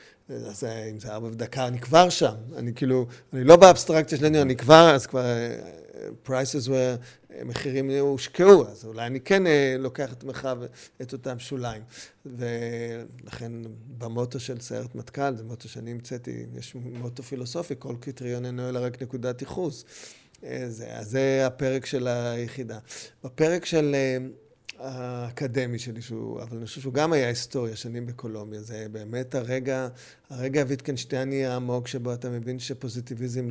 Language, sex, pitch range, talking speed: Hebrew, male, 120-140 Hz, 145 wpm